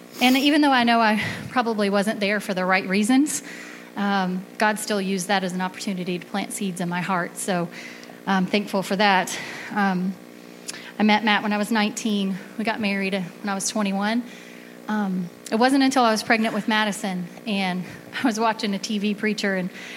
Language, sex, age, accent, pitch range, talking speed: English, female, 30-49, American, 185-220 Hz, 190 wpm